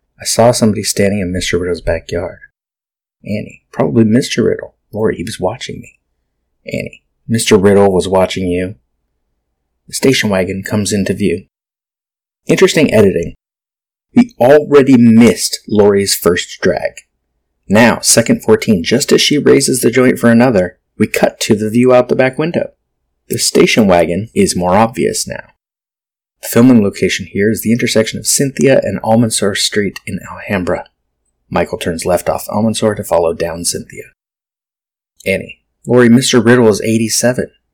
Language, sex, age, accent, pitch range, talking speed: English, male, 30-49, American, 85-120 Hz, 145 wpm